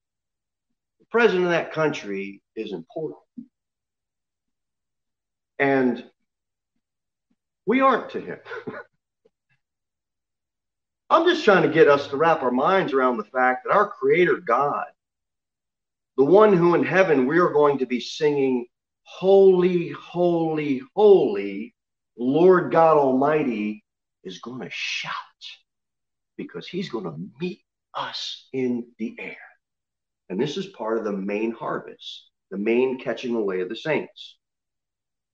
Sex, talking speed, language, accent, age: male, 125 wpm, English, American, 40-59